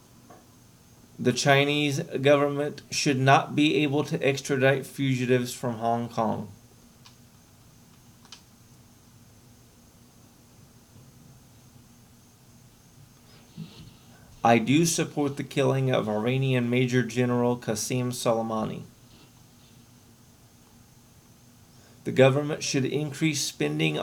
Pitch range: 120-140 Hz